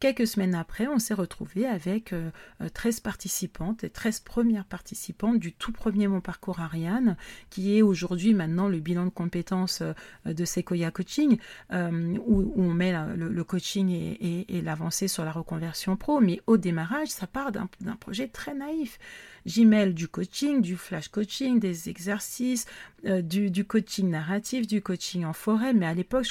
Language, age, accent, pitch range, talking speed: French, 40-59, French, 180-215 Hz, 180 wpm